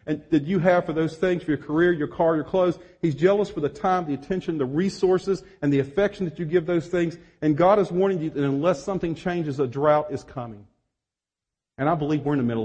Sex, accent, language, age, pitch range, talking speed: male, American, English, 40-59, 130-185 Hz, 235 wpm